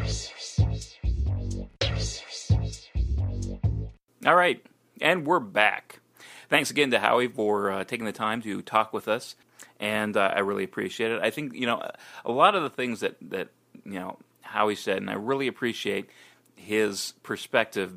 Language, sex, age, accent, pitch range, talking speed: English, male, 30-49, American, 95-110 Hz, 150 wpm